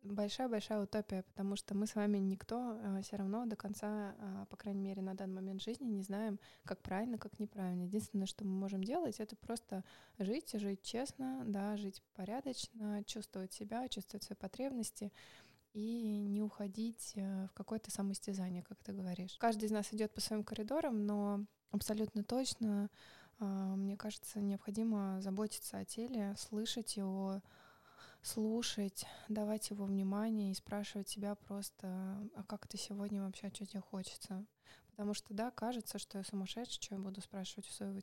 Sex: female